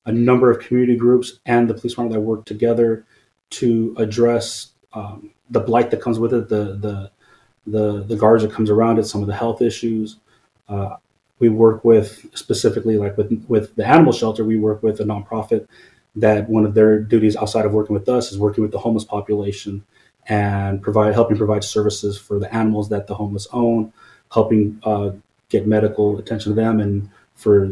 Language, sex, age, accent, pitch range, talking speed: English, male, 30-49, American, 105-115 Hz, 190 wpm